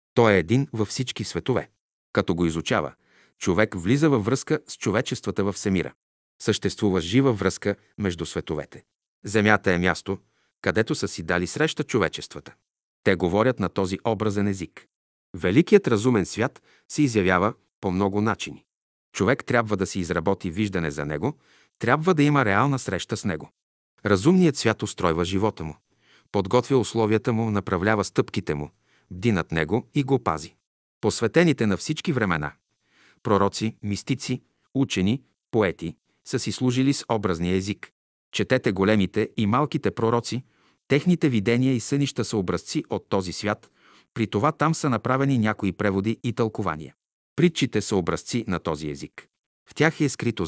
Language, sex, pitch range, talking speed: Bulgarian, male, 95-130 Hz, 145 wpm